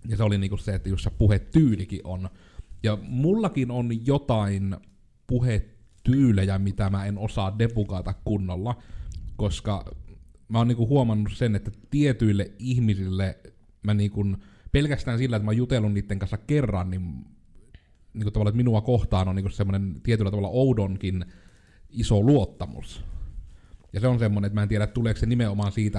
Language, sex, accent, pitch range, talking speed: Finnish, male, native, 95-110 Hz, 150 wpm